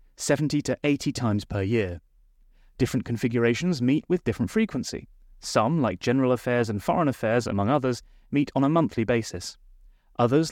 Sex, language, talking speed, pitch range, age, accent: male, English, 155 wpm, 110-140 Hz, 30-49, British